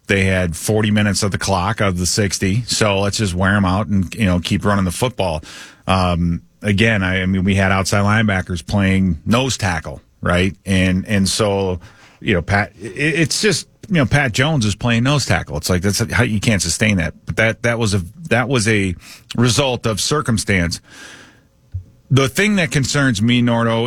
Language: English